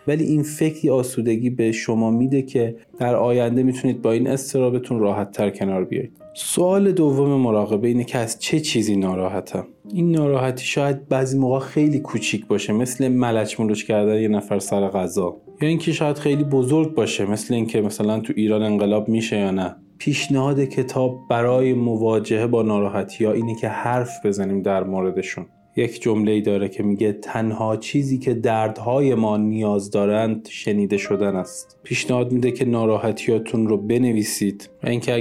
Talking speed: 160 wpm